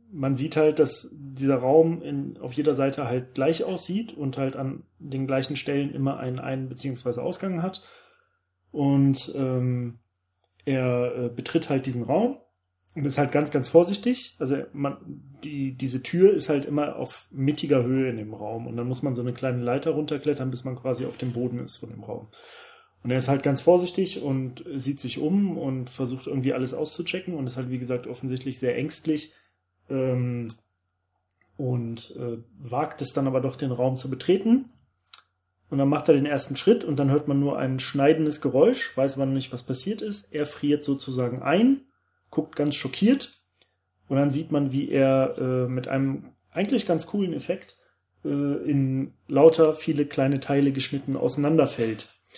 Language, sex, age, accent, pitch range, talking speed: German, male, 30-49, German, 130-150 Hz, 180 wpm